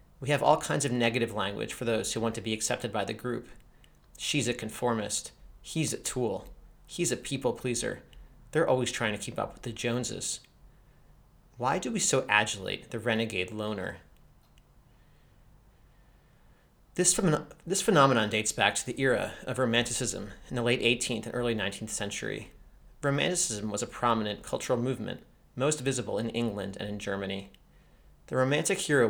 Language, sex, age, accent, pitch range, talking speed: English, male, 30-49, American, 105-125 Hz, 160 wpm